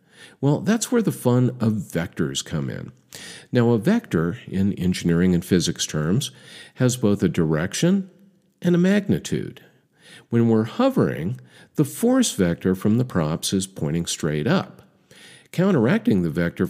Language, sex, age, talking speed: English, male, 50-69, 145 wpm